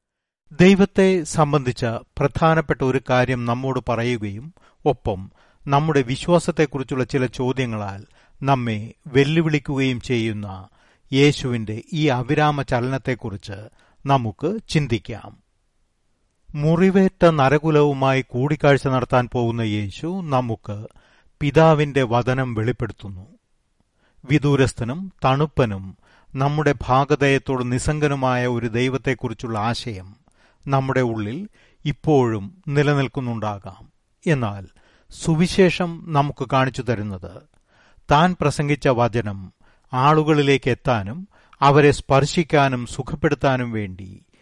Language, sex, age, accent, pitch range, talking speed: Malayalam, male, 30-49, native, 115-150 Hz, 75 wpm